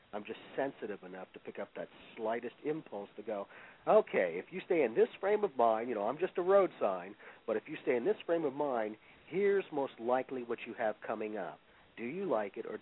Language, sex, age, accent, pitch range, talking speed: English, male, 50-69, American, 115-160 Hz, 235 wpm